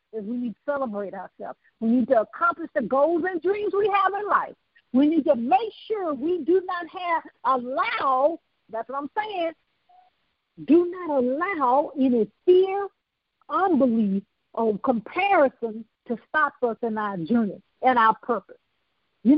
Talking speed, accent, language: 155 wpm, American, English